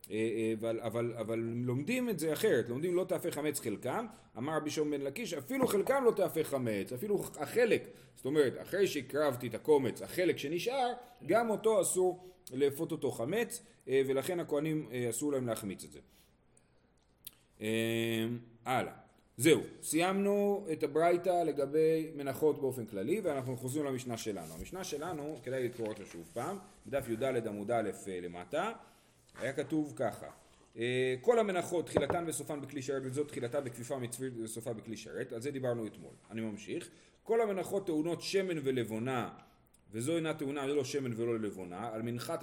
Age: 40-59